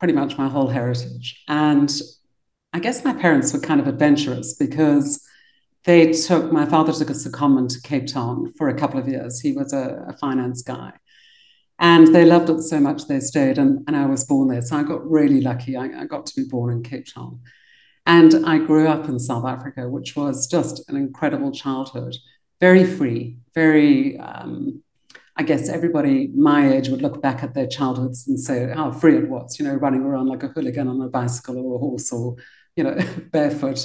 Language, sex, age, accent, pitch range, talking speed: English, female, 50-69, British, 130-180 Hz, 205 wpm